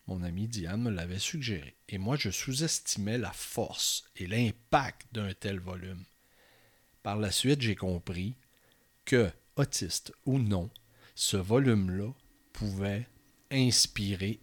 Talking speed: 125 wpm